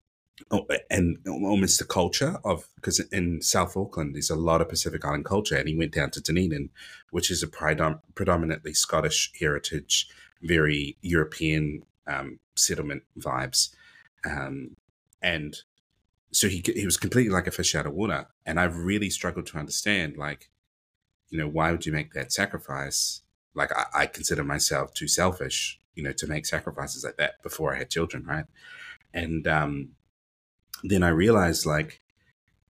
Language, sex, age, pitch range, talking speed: English, male, 30-49, 75-95 Hz, 160 wpm